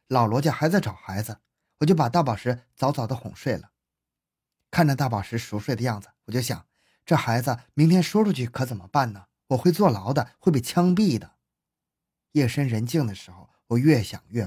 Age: 20-39